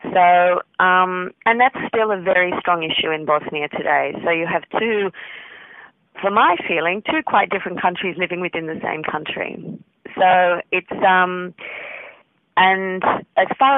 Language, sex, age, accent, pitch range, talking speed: English, female, 40-59, Australian, 165-200 Hz, 150 wpm